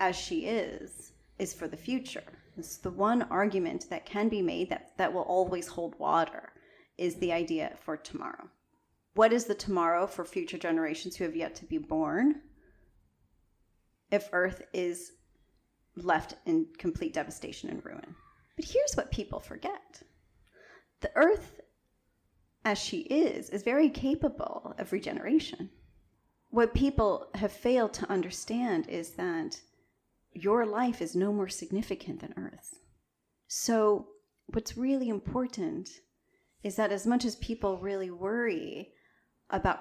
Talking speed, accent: 140 wpm, American